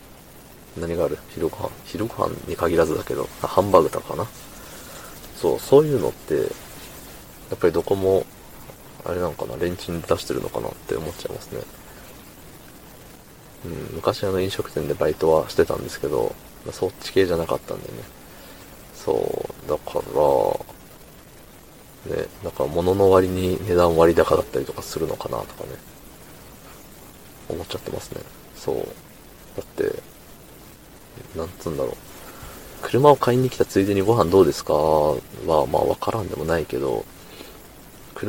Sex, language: male, Japanese